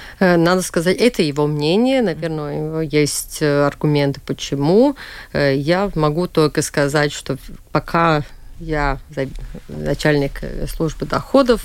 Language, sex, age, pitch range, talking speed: Russian, female, 30-49, 145-180 Hz, 100 wpm